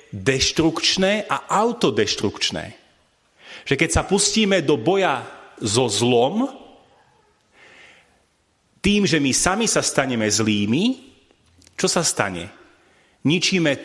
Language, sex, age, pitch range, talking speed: Slovak, male, 40-59, 120-180 Hz, 95 wpm